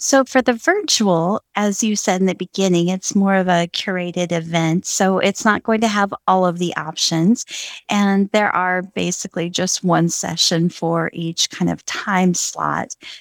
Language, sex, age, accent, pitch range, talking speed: English, female, 40-59, American, 170-210 Hz, 175 wpm